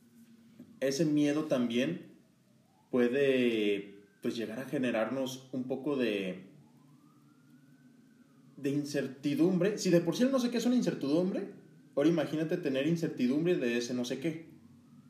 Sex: male